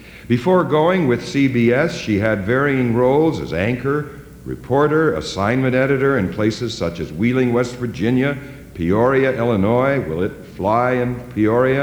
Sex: male